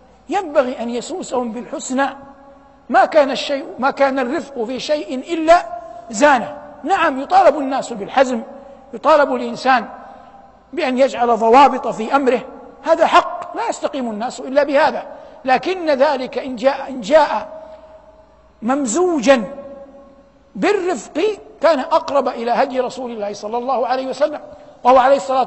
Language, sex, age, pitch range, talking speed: Arabic, male, 60-79, 250-320 Hz, 120 wpm